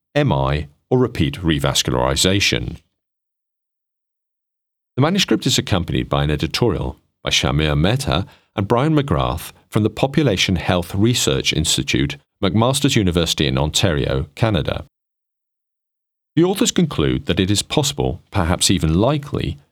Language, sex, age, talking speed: English, male, 40-59, 115 wpm